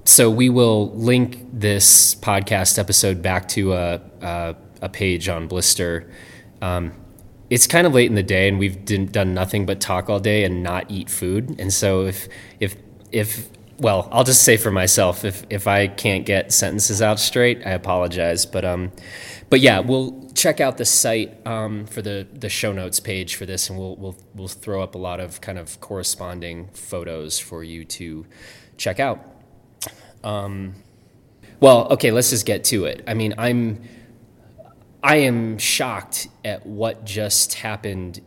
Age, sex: 20-39, male